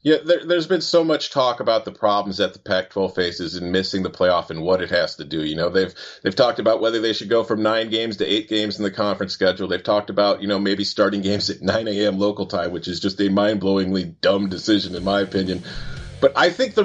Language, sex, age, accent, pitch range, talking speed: English, male, 30-49, American, 105-140 Hz, 250 wpm